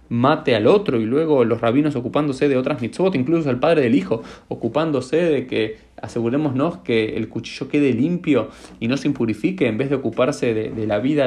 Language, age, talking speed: Spanish, 20-39, 195 wpm